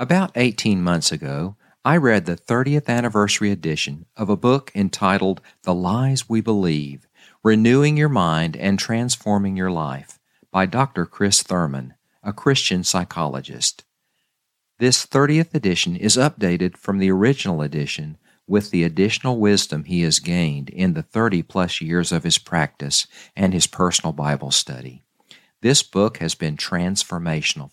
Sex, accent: male, American